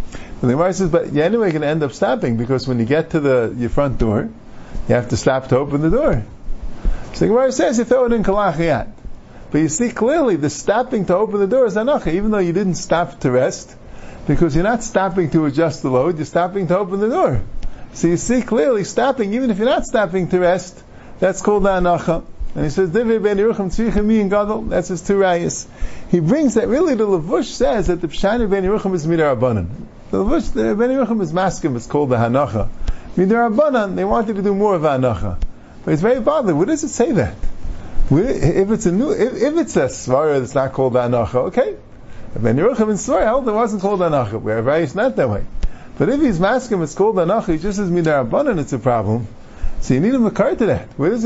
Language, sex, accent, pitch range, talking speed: English, male, American, 135-215 Hz, 215 wpm